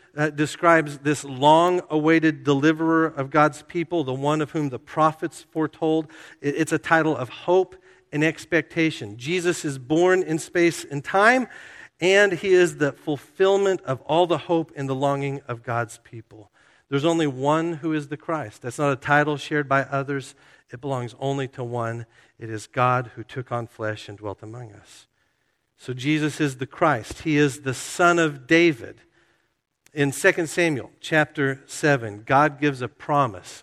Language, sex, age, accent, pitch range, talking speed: English, male, 50-69, American, 130-160 Hz, 170 wpm